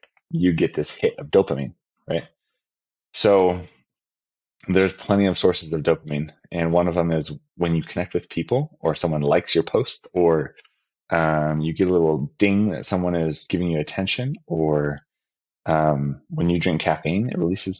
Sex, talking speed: male, 170 wpm